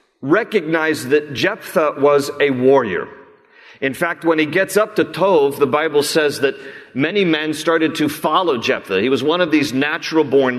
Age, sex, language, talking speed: 40-59, male, English, 170 wpm